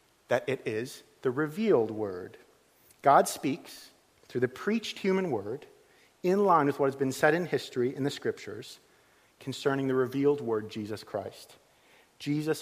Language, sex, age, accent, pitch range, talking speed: English, male, 40-59, American, 125-190 Hz, 150 wpm